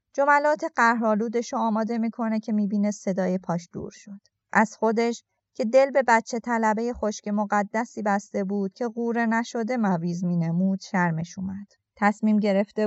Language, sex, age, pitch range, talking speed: Persian, female, 30-49, 175-225 Hz, 145 wpm